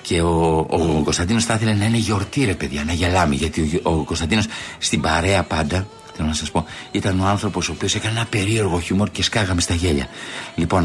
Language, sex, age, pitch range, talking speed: Greek, male, 60-79, 80-105 Hz, 205 wpm